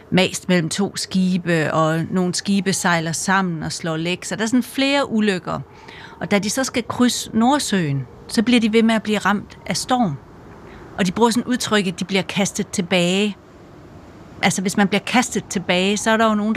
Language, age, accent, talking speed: Danish, 40-59, native, 205 wpm